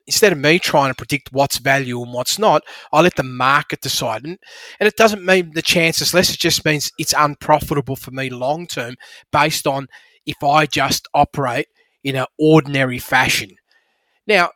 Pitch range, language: 130-165 Hz, English